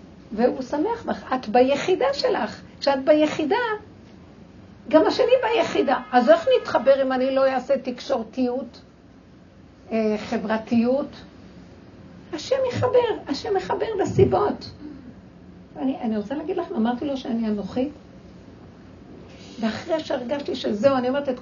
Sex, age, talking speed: female, 60-79, 110 wpm